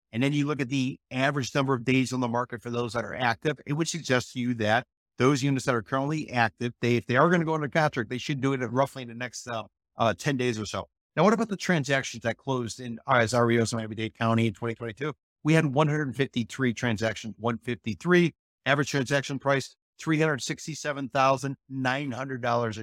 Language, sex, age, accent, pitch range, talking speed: English, male, 50-69, American, 120-140 Hz, 205 wpm